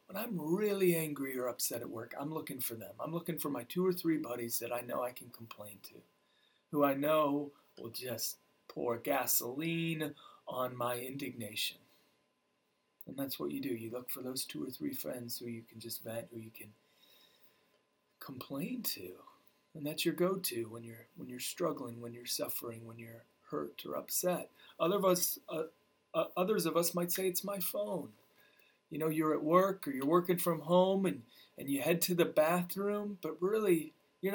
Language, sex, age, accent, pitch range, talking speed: English, male, 40-59, American, 130-185 Hz, 190 wpm